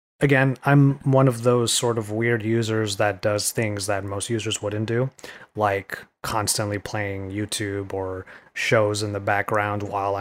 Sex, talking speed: male, 160 wpm